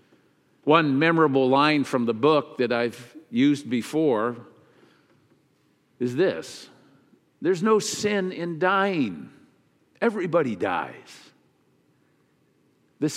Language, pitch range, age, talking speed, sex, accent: English, 130-190 Hz, 50-69, 90 wpm, male, American